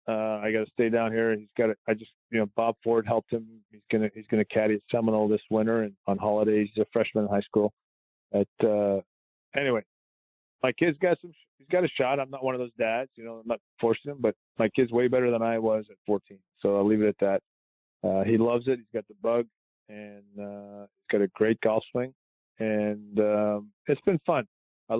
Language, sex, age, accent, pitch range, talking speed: English, male, 40-59, American, 105-125 Hz, 240 wpm